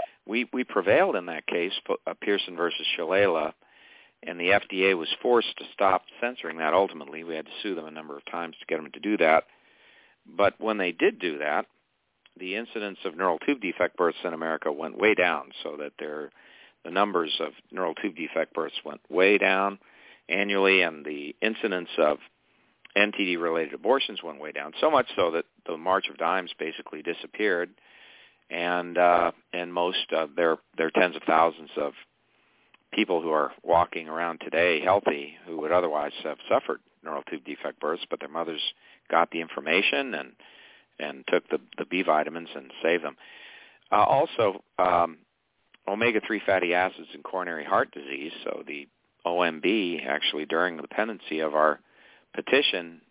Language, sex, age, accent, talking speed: English, male, 50-69, American, 170 wpm